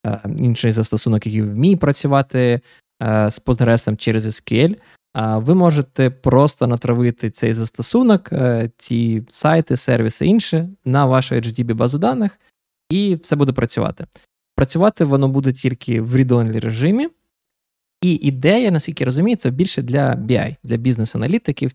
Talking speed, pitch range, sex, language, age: 125 wpm, 120-160 Hz, male, Ukrainian, 20-39